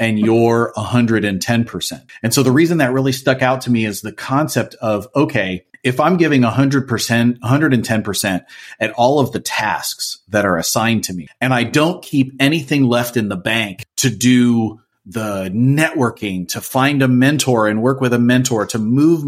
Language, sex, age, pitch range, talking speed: English, male, 30-49, 110-135 Hz, 185 wpm